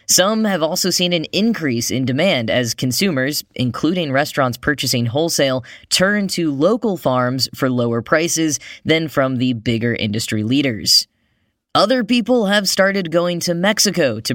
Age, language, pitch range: 10-29, English, 125-170 Hz